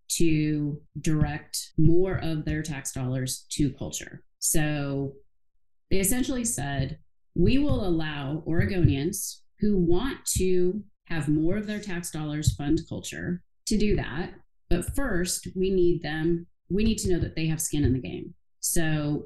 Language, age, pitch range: English, 30-49, 145-175 Hz